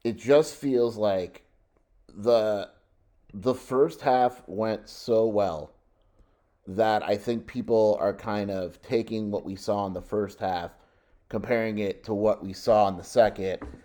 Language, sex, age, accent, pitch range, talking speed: English, male, 30-49, American, 95-115 Hz, 150 wpm